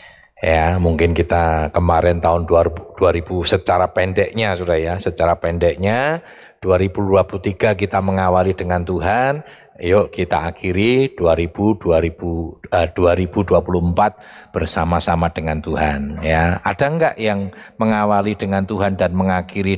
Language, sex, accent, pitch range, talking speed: Indonesian, male, native, 90-115 Hz, 110 wpm